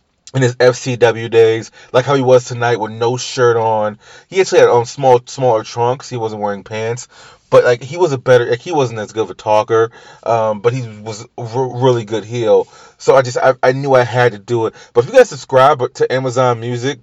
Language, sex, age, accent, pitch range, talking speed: English, male, 30-49, American, 115-180 Hz, 235 wpm